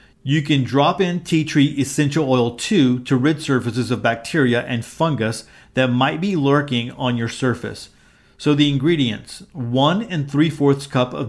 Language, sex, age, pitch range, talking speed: English, male, 40-59, 120-150 Hz, 165 wpm